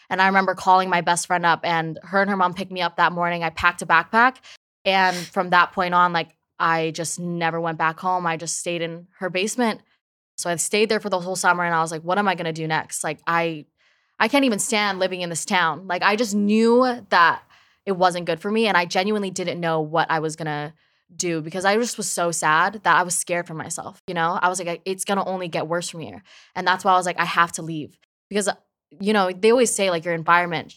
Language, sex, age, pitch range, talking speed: English, female, 20-39, 165-190 Hz, 260 wpm